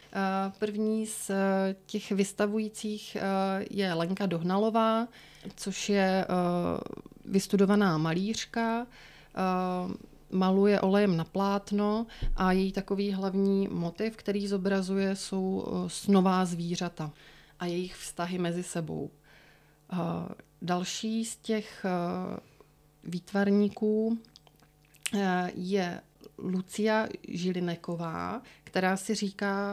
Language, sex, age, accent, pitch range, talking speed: Czech, female, 30-49, native, 180-200 Hz, 80 wpm